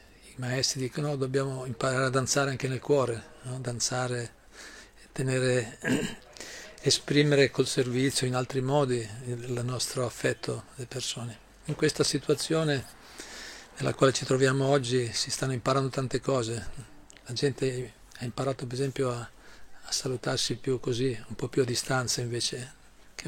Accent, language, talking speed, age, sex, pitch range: native, Italian, 145 wpm, 40-59, male, 120-135 Hz